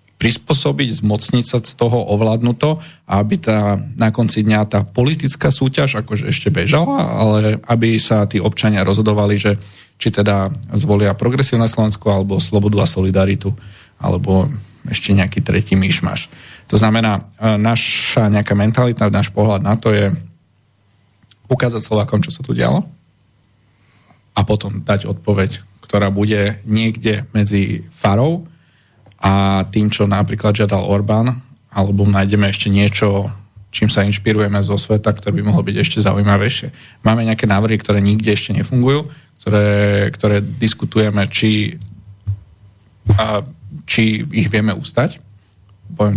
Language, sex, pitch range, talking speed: Slovak, male, 100-115 Hz, 130 wpm